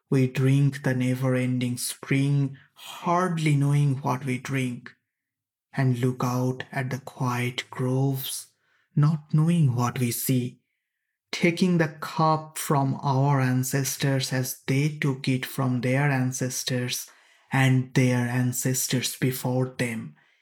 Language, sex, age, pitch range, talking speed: English, male, 20-39, 130-145 Hz, 120 wpm